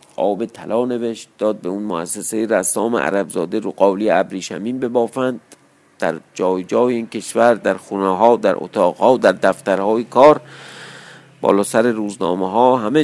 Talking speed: 150 wpm